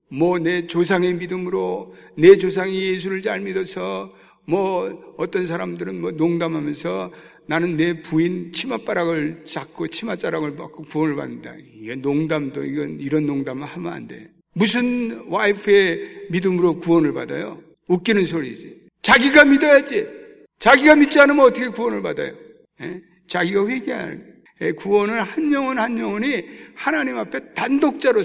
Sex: male